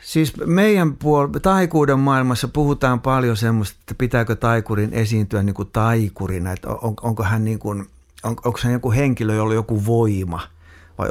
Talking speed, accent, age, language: 155 wpm, native, 60-79, Finnish